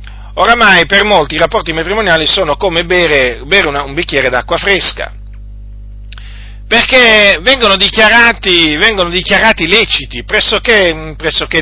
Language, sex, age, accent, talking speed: Italian, male, 40-59, native, 120 wpm